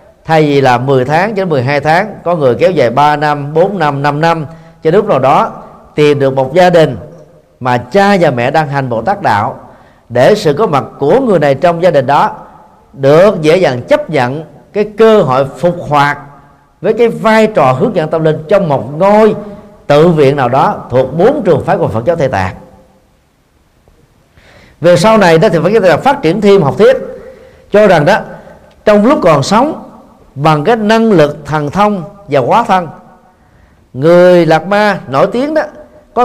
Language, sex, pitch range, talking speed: Vietnamese, male, 135-205 Hz, 195 wpm